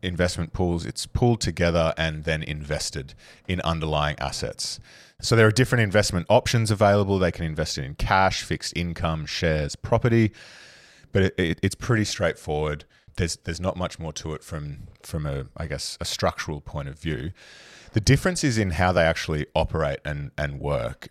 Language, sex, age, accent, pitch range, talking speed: English, male, 30-49, Australian, 80-100 Hz, 175 wpm